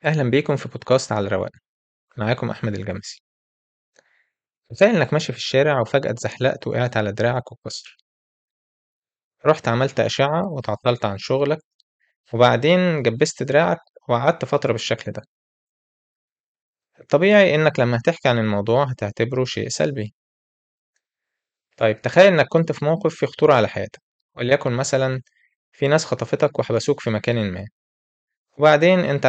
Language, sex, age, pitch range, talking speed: Arabic, male, 20-39, 110-145 Hz, 130 wpm